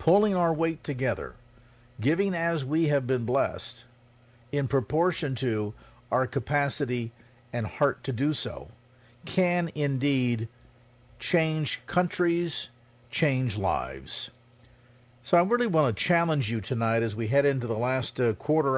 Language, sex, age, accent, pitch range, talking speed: English, male, 50-69, American, 120-150 Hz, 135 wpm